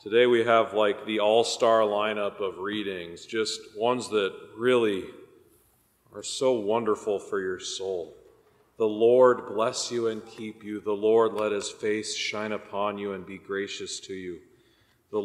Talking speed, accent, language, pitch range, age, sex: 155 wpm, American, English, 100-125 Hz, 40-59, male